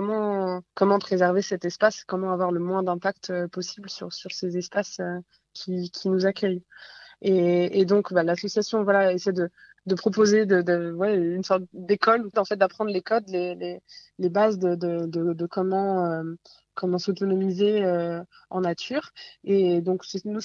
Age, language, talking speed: 20-39, French, 175 wpm